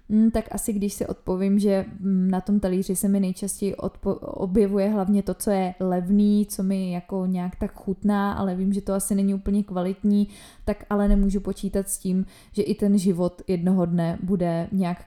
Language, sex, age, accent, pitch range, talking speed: Czech, female, 20-39, native, 185-210 Hz, 190 wpm